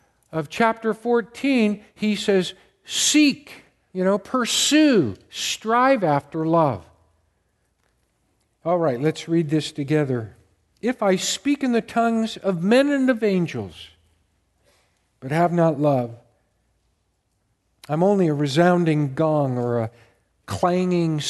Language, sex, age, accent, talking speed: English, male, 50-69, American, 115 wpm